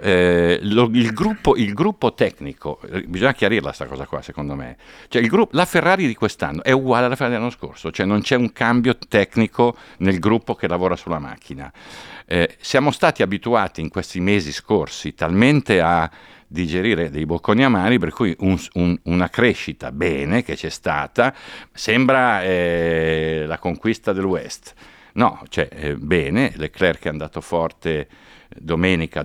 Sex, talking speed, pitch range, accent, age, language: male, 160 wpm, 80-110 Hz, native, 50-69, Italian